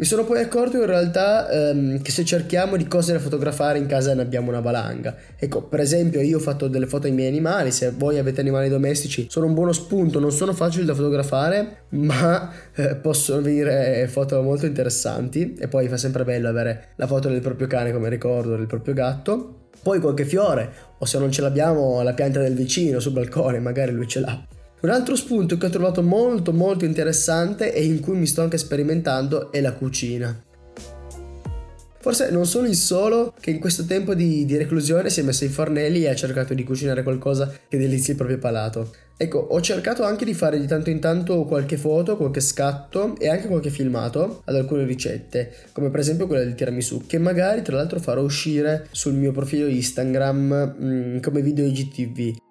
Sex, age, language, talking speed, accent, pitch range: male, 20-39, Italian, 200 wpm, native, 130-170 Hz